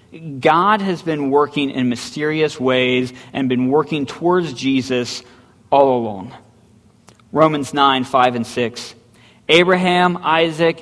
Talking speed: 115 wpm